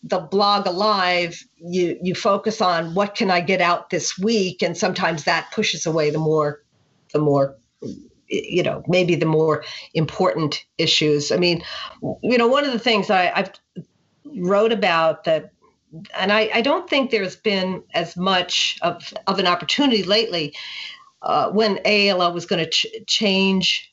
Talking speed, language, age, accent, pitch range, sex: 165 wpm, English, 50-69, American, 160-205 Hz, female